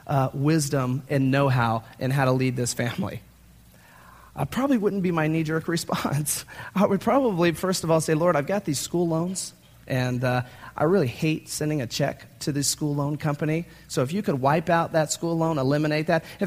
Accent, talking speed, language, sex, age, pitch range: American, 205 wpm, English, male, 30-49, 135-185 Hz